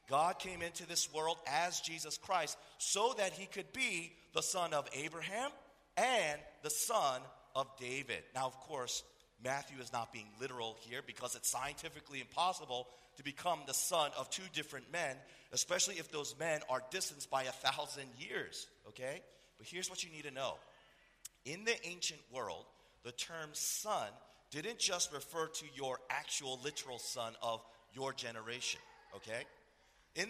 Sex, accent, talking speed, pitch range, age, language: male, American, 160 wpm, 135-180 Hz, 40-59, English